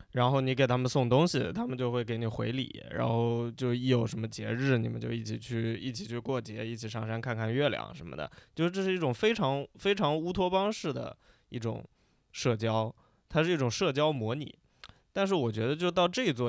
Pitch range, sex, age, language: 115-140 Hz, male, 20-39, Chinese